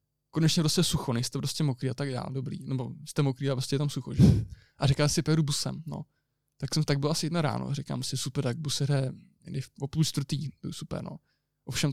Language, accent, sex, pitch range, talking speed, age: Czech, native, male, 135-160 Hz, 225 wpm, 20-39